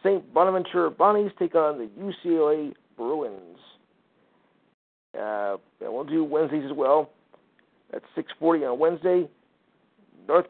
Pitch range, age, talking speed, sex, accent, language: 135-165 Hz, 50-69, 115 wpm, male, American, English